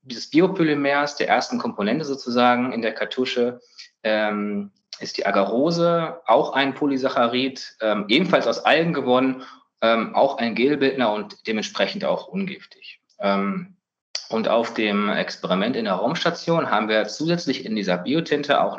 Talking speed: 140 wpm